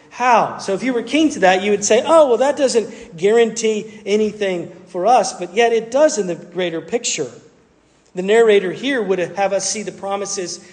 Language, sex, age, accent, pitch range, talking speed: English, male, 40-59, American, 175-220 Hz, 200 wpm